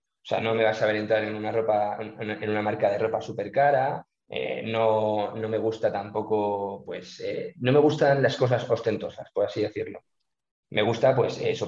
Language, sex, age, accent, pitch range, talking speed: Spanish, male, 20-39, Spanish, 105-140 Hz, 200 wpm